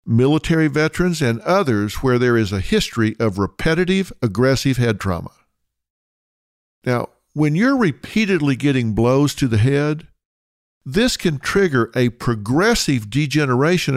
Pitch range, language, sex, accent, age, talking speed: 110-155 Hz, English, male, American, 50-69, 125 wpm